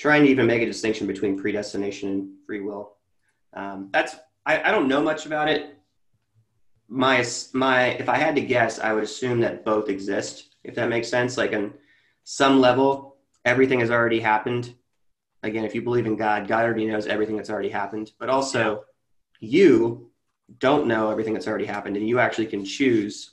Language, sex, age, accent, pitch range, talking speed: English, male, 30-49, American, 105-130 Hz, 185 wpm